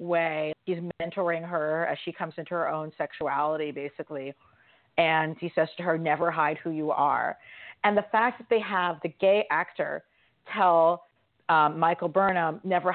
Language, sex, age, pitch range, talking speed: English, female, 40-59, 165-215 Hz, 165 wpm